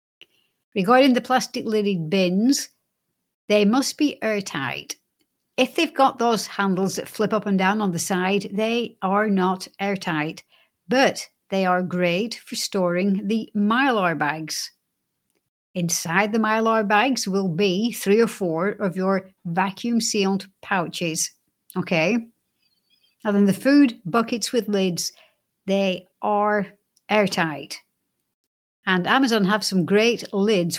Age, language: 60-79, English